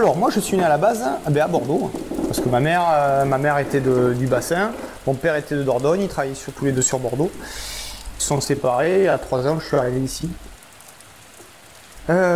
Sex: male